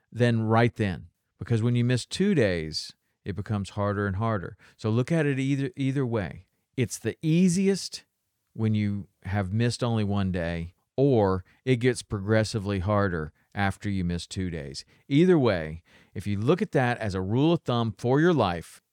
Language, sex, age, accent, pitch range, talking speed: English, male, 40-59, American, 100-140 Hz, 180 wpm